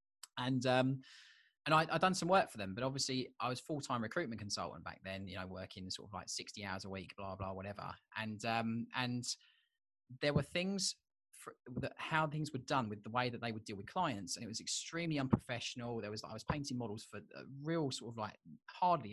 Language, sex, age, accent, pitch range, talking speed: English, male, 20-39, British, 110-145 Hz, 225 wpm